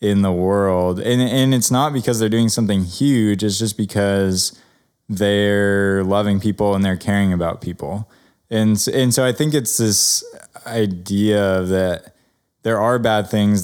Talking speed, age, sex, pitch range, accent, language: 160 wpm, 20-39, male, 95-115 Hz, American, English